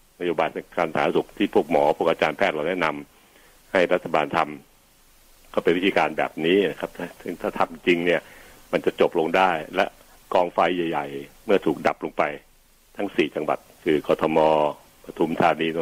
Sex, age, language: male, 60-79, Thai